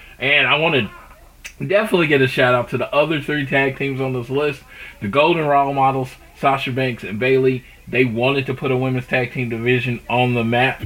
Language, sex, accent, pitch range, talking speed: English, male, American, 120-150 Hz, 205 wpm